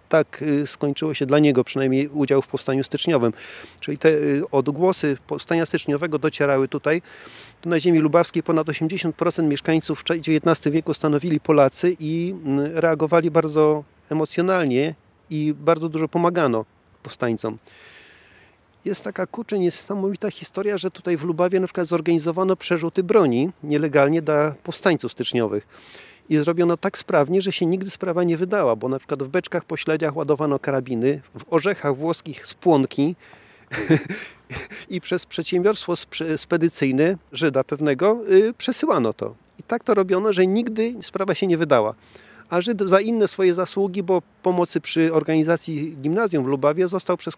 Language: Polish